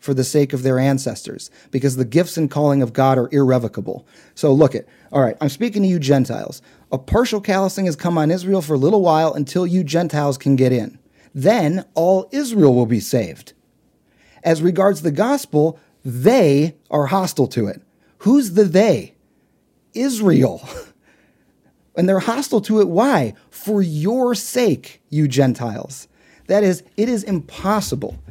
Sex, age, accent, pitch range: male, 30-49, American, 135-185 Hz